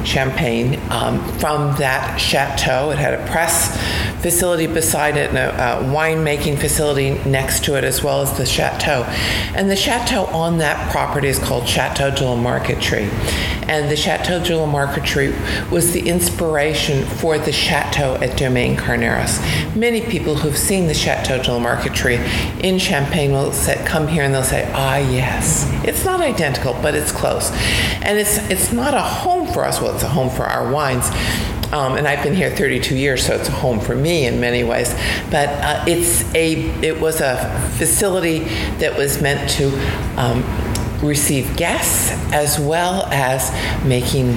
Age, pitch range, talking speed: 50-69, 125-160 Hz, 170 wpm